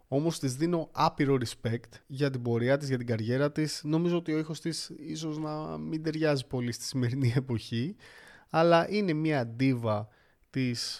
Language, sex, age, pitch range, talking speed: Greek, male, 20-39, 120-160 Hz, 170 wpm